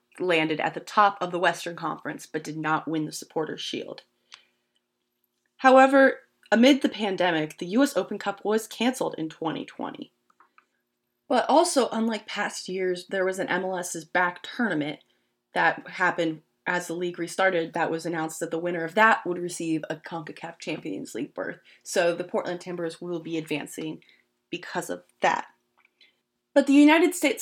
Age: 20-39